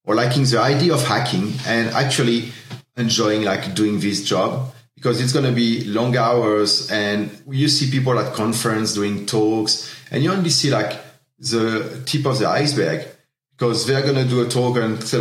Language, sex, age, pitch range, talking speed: English, male, 40-59, 110-135 Hz, 185 wpm